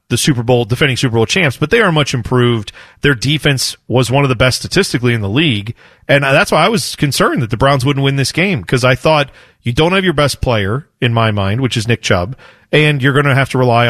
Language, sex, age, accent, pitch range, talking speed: English, male, 40-59, American, 120-150 Hz, 255 wpm